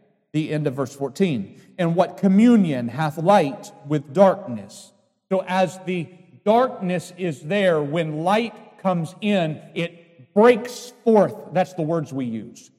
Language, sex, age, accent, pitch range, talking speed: English, male, 40-59, American, 170-220 Hz, 140 wpm